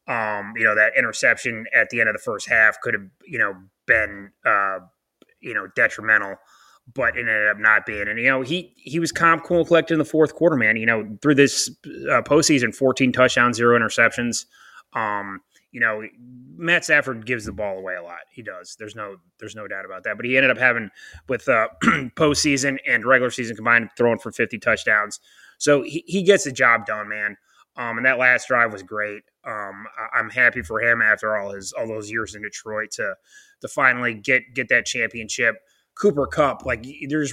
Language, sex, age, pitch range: English, male, 20-39, 110-135 Hz